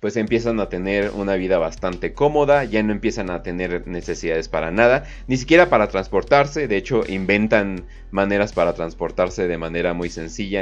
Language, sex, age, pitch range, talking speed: Spanish, male, 30-49, 100-145 Hz, 170 wpm